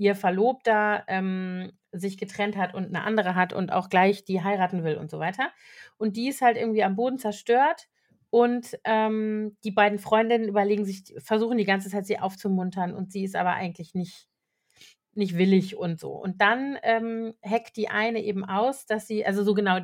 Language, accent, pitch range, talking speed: German, German, 185-220 Hz, 190 wpm